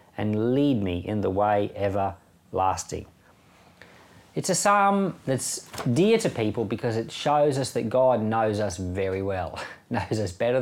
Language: English